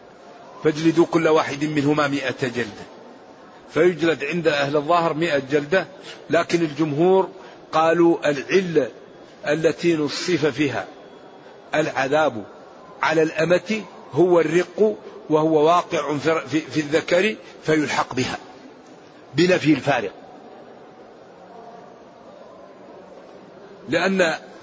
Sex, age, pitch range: male, 50-69, 155-195 Hz